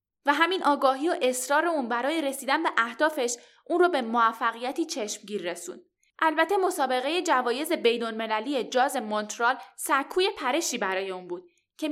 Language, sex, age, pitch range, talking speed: Persian, female, 10-29, 230-320 Hz, 140 wpm